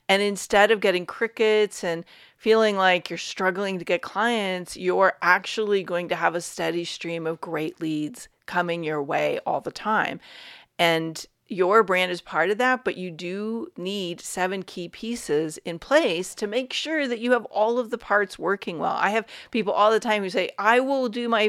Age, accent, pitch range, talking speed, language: 40-59, American, 170-220 Hz, 195 wpm, English